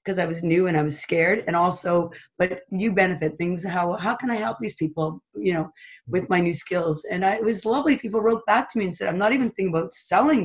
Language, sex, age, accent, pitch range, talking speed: English, female, 40-59, American, 165-195 Hz, 260 wpm